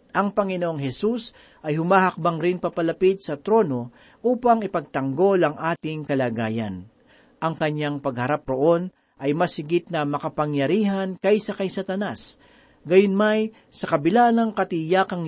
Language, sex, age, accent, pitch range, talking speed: Filipino, male, 40-59, native, 145-200 Hz, 120 wpm